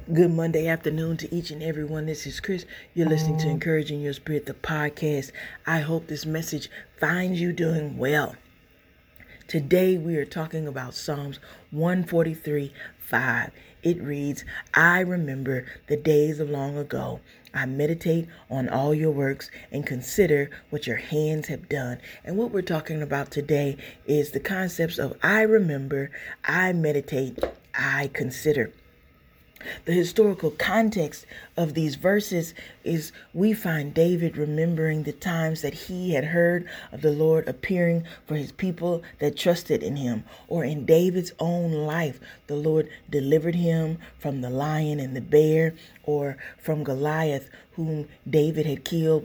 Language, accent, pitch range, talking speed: English, American, 145-170 Hz, 150 wpm